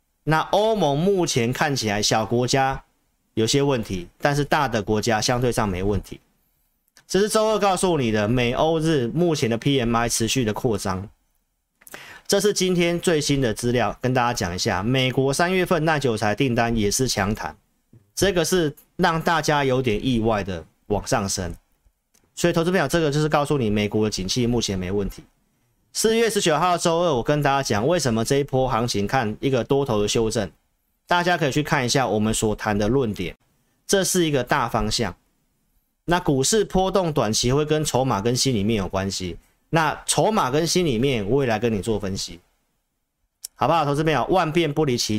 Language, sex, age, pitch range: Chinese, male, 40-59, 110-155 Hz